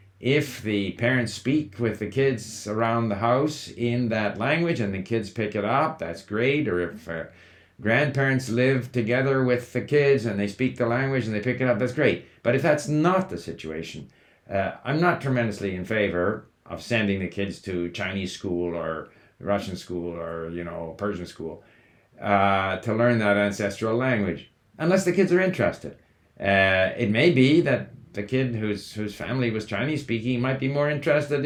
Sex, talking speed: male, 185 wpm